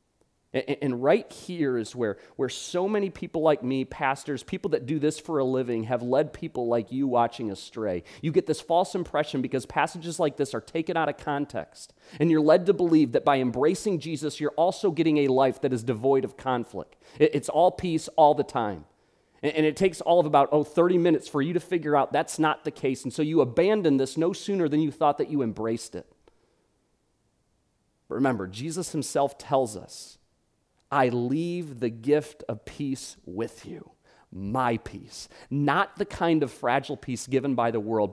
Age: 30-49